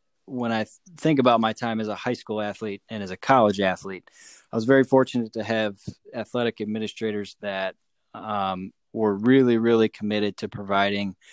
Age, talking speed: 20-39, 170 wpm